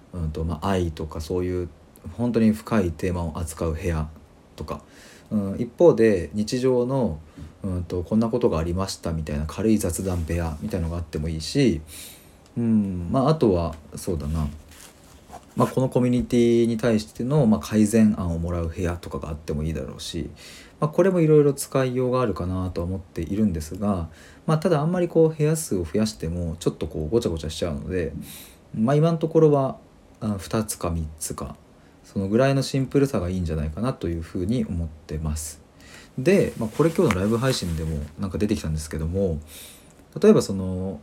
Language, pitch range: Japanese, 80-110 Hz